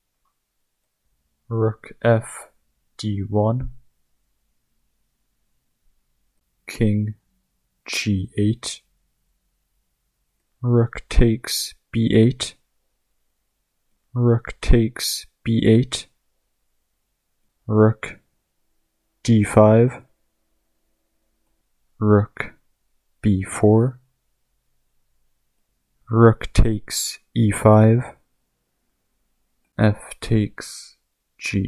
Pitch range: 95-115 Hz